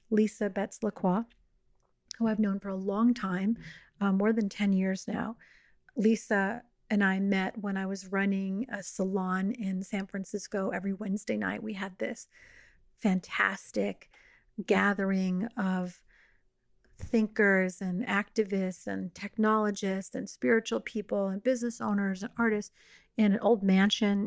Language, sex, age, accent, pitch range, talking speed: English, female, 40-59, American, 190-215 Hz, 135 wpm